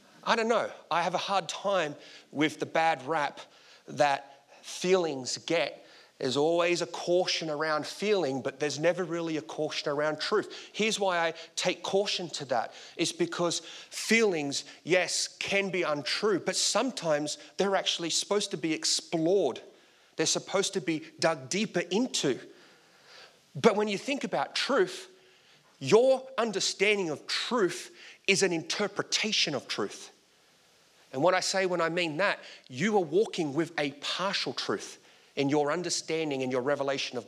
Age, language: 30-49, English